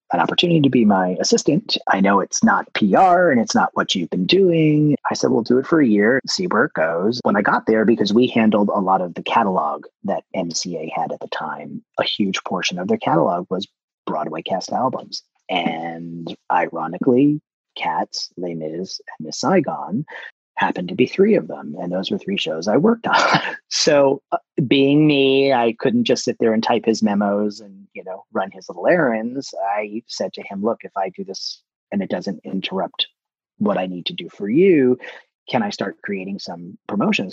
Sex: male